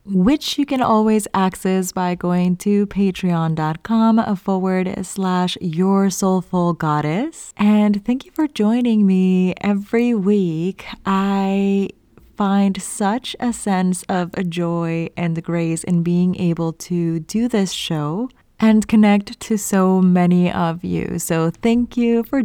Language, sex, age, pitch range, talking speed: English, female, 20-39, 170-210 Hz, 130 wpm